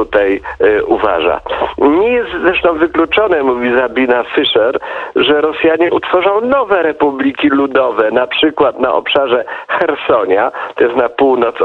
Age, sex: 50-69, male